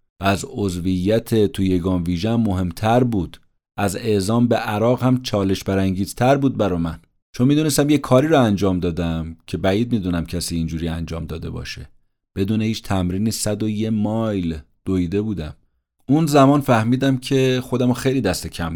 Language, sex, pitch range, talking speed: Persian, male, 90-120 Hz, 155 wpm